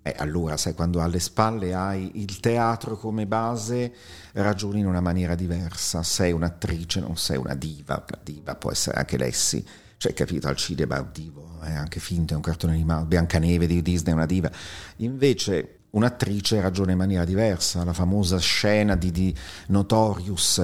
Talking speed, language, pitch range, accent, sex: 175 wpm, Italian, 85-105 Hz, native, male